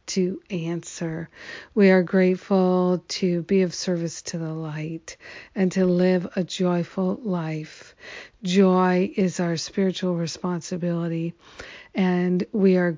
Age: 50-69